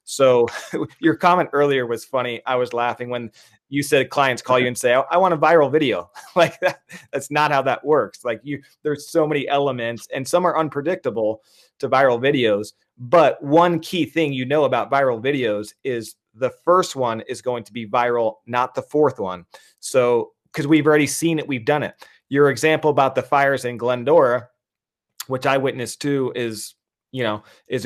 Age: 30-49